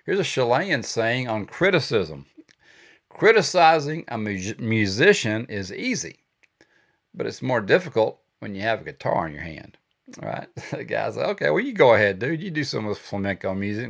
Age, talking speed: 50-69, 180 wpm